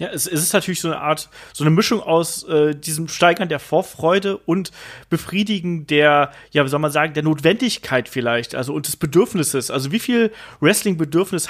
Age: 30-49